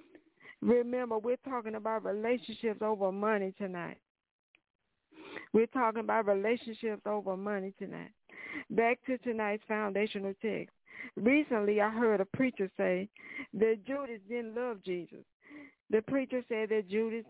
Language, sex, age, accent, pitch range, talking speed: English, female, 60-79, American, 205-260 Hz, 125 wpm